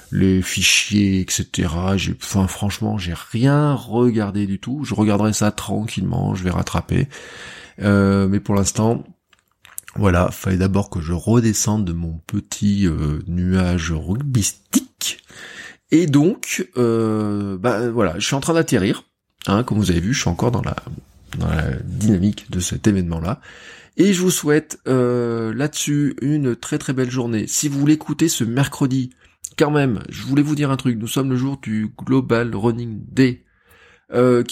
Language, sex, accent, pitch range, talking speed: French, male, French, 100-130 Hz, 165 wpm